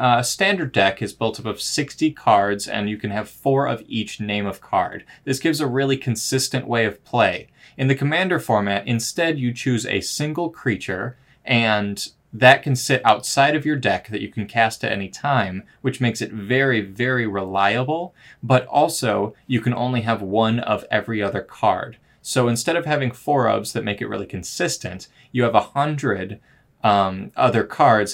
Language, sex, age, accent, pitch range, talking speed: English, male, 20-39, American, 105-135 Hz, 190 wpm